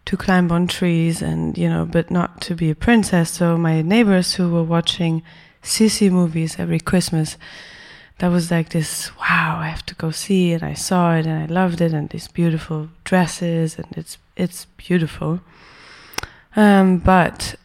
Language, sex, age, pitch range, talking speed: English, female, 20-39, 160-185 Hz, 175 wpm